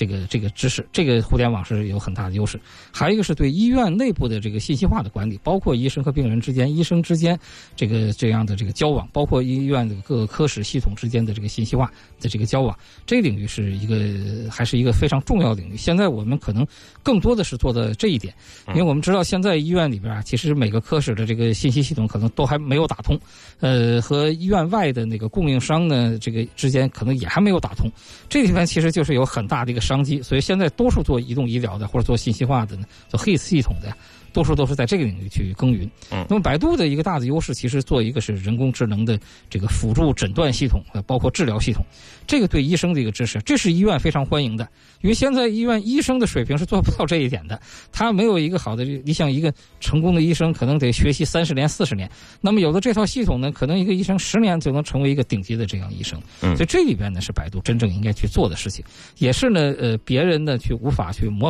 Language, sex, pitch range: Chinese, male, 110-155 Hz